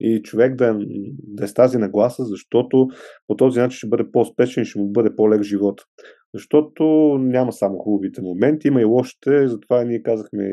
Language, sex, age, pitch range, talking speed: Bulgarian, male, 30-49, 105-130 Hz, 190 wpm